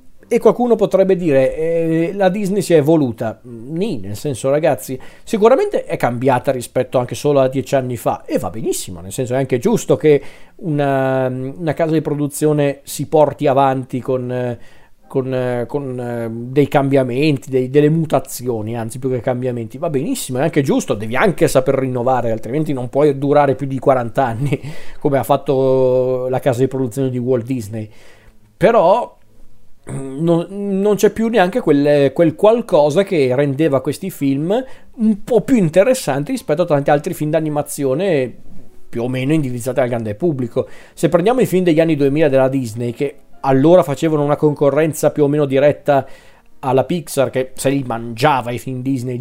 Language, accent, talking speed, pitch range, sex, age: Italian, native, 165 wpm, 130-160 Hz, male, 40-59